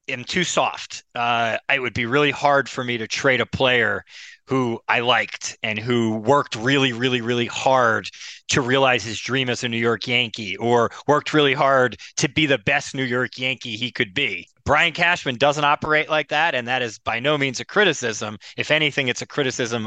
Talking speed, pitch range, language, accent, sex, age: 200 wpm, 115-145 Hz, English, American, male, 30-49